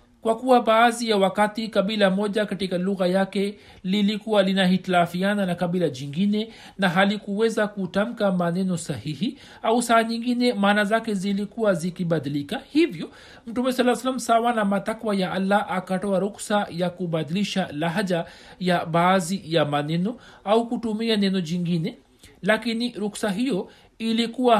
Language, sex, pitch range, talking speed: Swahili, male, 185-225 Hz, 125 wpm